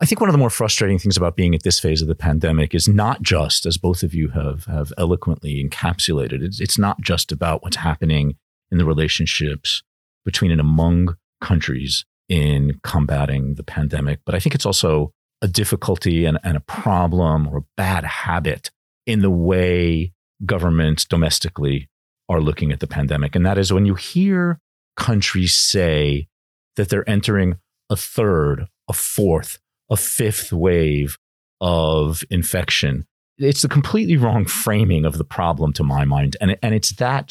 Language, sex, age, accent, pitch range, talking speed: English, male, 40-59, American, 80-105 Hz, 170 wpm